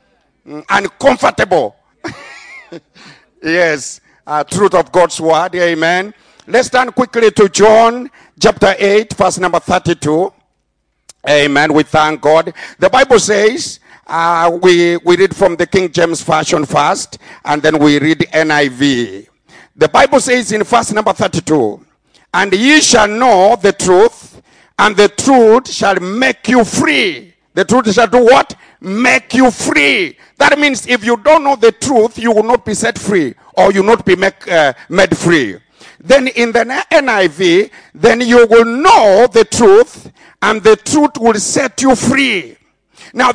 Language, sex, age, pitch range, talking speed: English, male, 50-69, 175-255 Hz, 150 wpm